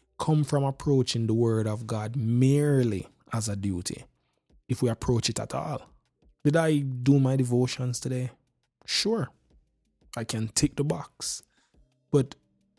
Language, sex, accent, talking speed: English, male, Nigerian, 140 wpm